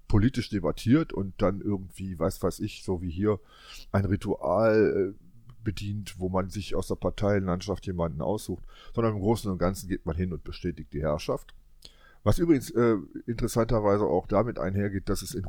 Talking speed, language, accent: 170 wpm, German, German